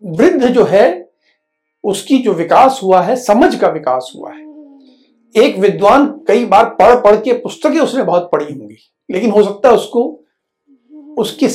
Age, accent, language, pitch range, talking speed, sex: 60-79, native, Hindi, 195-310 Hz, 160 wpm, male